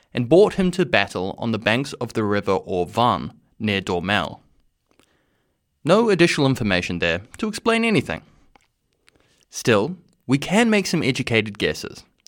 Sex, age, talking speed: male, 20-39, 135 wpm